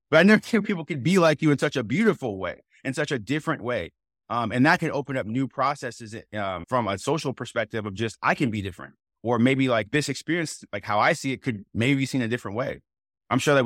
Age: 20-39